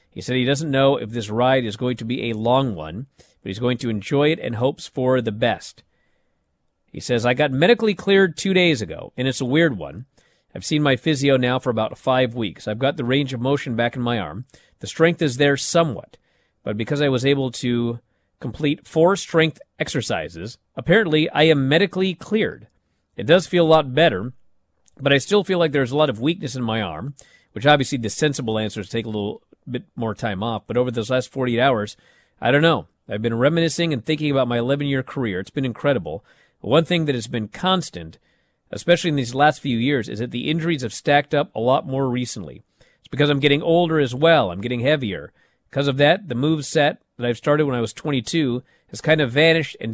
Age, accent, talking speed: 40-59, American, 220 wpm